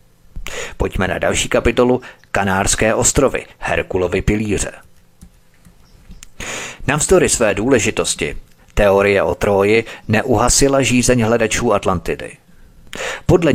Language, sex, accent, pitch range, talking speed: Czech, male, native, 100-125 Hz, 85 wpm